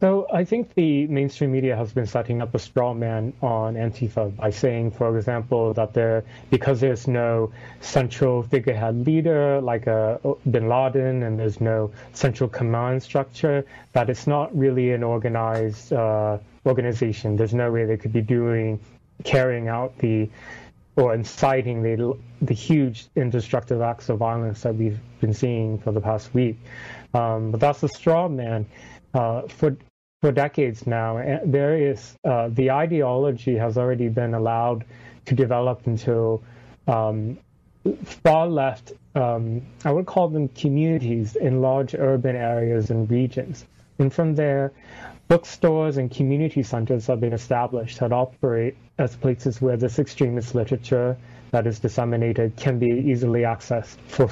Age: 30-49